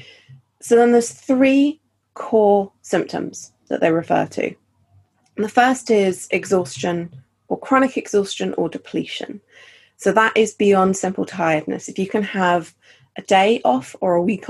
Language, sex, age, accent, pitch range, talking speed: English, female, 30-49, British, 160-200 Hz, 145 wpm